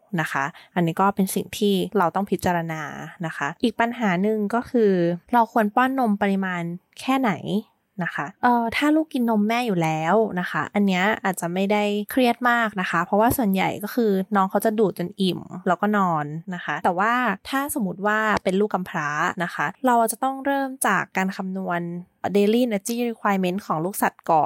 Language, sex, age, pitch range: Thai, female, 20-39, 180-235 Hz